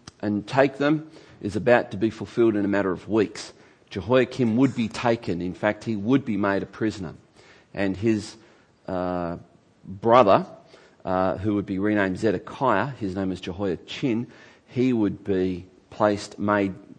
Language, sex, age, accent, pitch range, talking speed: English, male, 40-59, Australian, 100-135 Hz, 155 wpm